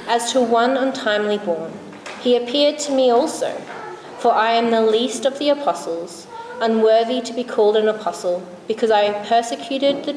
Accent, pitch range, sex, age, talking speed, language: Australian, 205-245 Hz, female, 20-39, 165 wpm, English